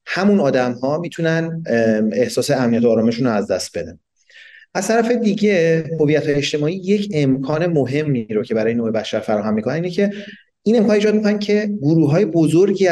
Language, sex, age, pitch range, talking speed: Persian, male, 30-49, 115-160 Hz, 170 wpm